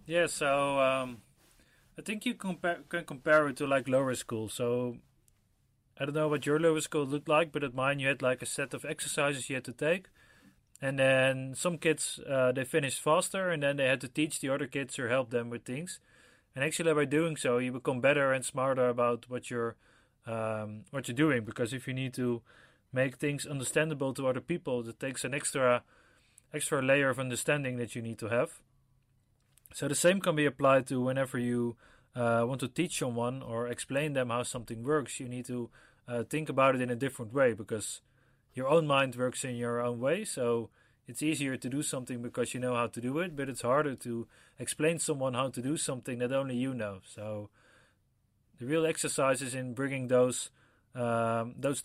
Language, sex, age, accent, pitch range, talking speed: English, male, 30-49, Dutch, 120-145 Hz, 205 wpm